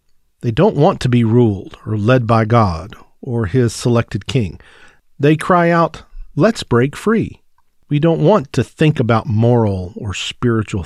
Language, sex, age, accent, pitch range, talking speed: English, male, 50-69, American, 105-145 Hz, 160 wpm